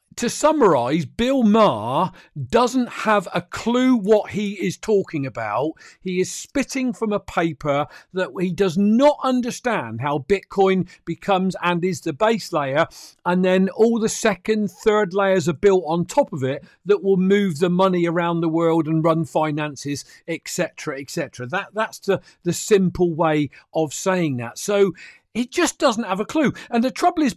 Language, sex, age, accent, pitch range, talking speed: English, male, 50-69, British, 170-230 Hz, 170 wpm